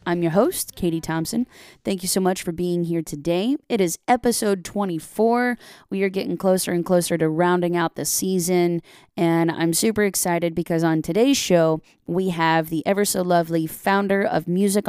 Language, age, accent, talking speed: English, 20-39, American, 180 wpm